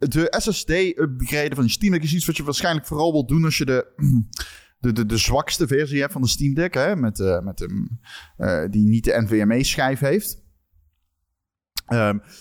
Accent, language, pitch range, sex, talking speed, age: Dutch, Dutch, 110-165 Hz, male, 190 wpm, 30-49